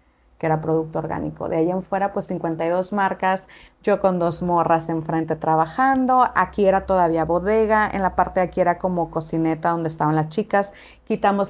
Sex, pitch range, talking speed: female, 185-225 Hz, 175 wpm